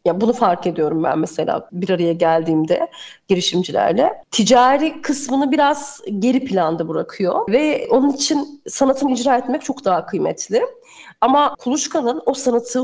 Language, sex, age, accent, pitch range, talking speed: Turkish, female, 40-59, native, 205-275 Hz, 135 wpm